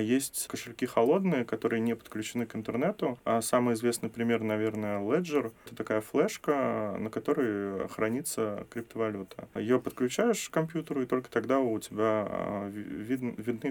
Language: Russian